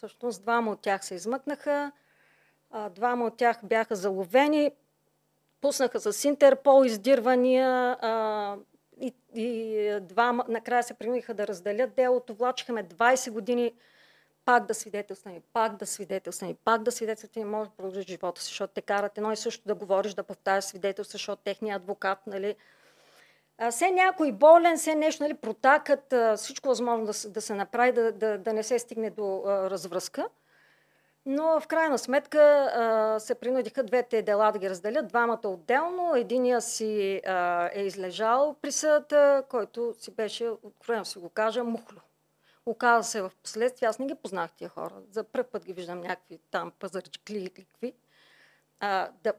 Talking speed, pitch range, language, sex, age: 160 wpm, 205-255 Hz, Bulgarian, female, 40-59